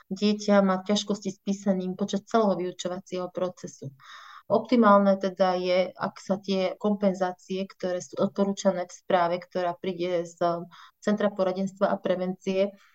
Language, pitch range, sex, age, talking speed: Slovak, 180-200 Hz, female, 30-49, 130 wpm